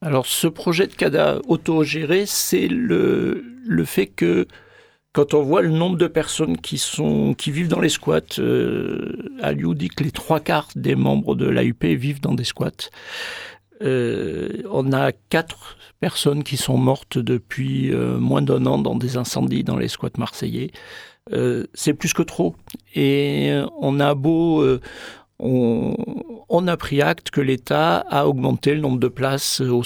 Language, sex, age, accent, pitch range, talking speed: French, male, 50-69, French, 125-165 Hz, 165 wpm